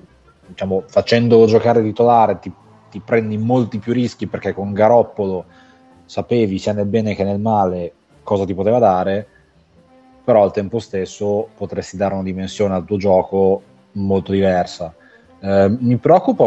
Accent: native